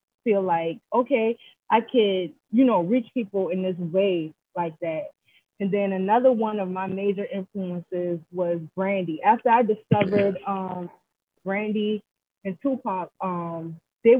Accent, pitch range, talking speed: American, 175-205 Hz, 140 wpm